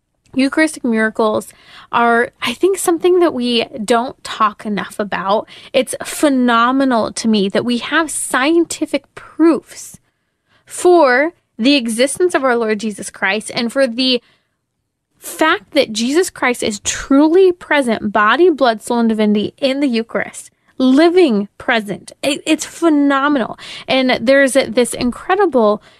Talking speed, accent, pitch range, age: 125 wpm, American, 220-275 Hz, 20-39